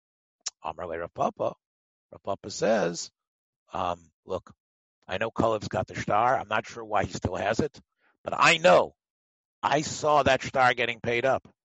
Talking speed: 155 wpm